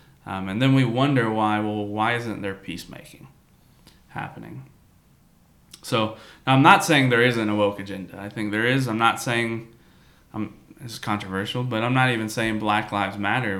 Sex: male